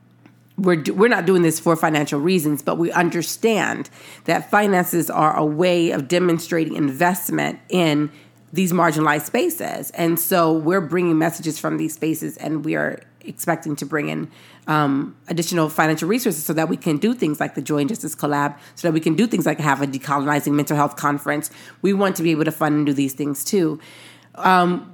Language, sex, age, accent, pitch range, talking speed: English, female, 30-49, American, 150-180 Hz, 190 wpm